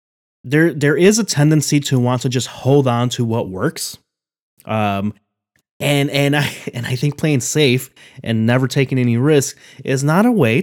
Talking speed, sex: 180 wpm, male